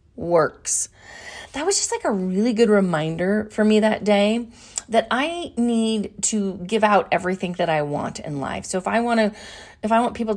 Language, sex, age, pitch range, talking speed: English, female, 30-49, 195-235 Hz, 195 wpm